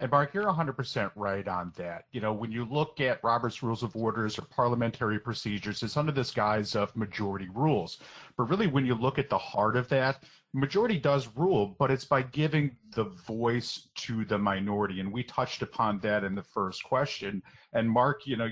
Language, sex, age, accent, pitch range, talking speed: English, male, 40-59, American, 110-140 Hz, 200 wpm